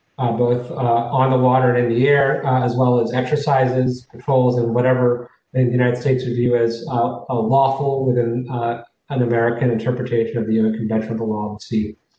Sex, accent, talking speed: male, American, 210 wpm